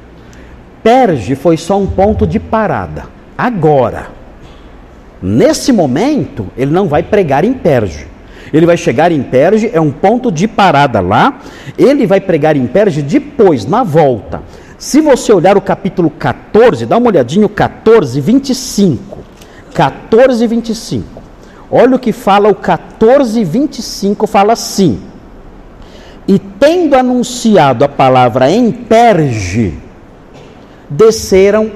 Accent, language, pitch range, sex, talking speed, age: Brazilian, Portuguese, 140-235 Hz, male, 125 wpm, 50-69